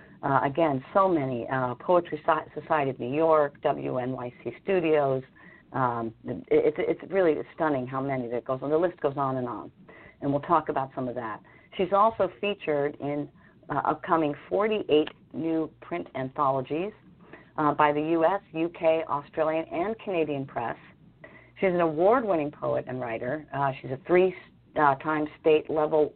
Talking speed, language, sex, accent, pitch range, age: 155 wpm, English, female, American, 135-170 Hz, 50-69